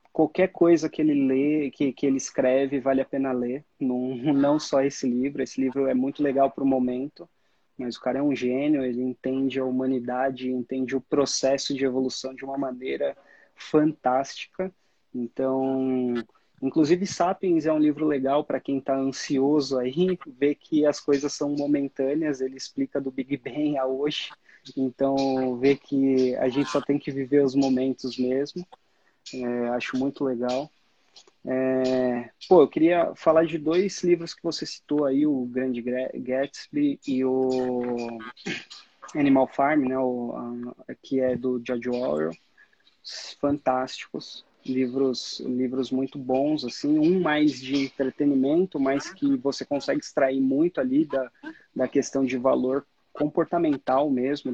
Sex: male